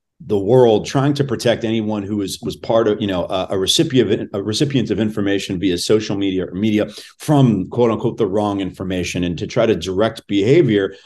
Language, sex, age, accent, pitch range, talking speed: English, male, 40-59, American, 100-125 Hz, 195 wpm